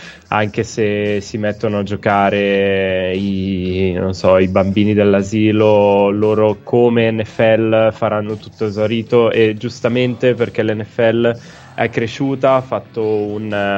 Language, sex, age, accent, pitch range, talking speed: Italian, male, 20-39, native, 110-120 Hz, 105 wpm